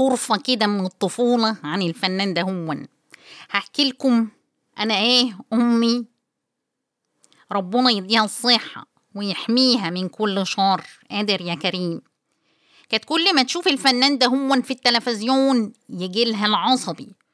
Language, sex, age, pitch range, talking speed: Arabic, female, 30-49, 220-275 Hz, 115 wpm